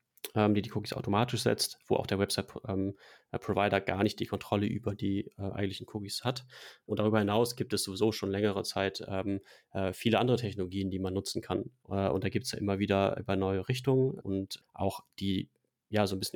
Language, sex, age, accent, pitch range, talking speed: German, male, 30-49, German, 100-110 Hz, 185 wpm